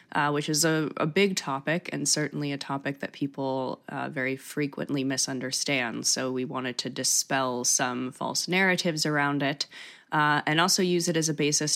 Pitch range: 135-155 Hz